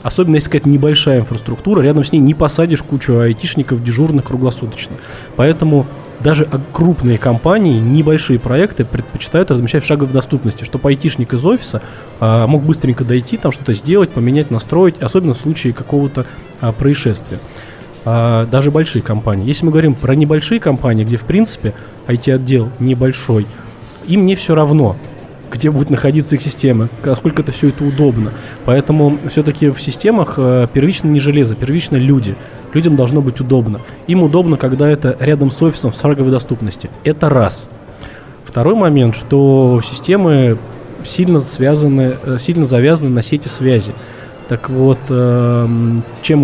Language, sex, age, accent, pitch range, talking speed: Russian, male, 20-39, native, 120-150 Hz, 145 wpm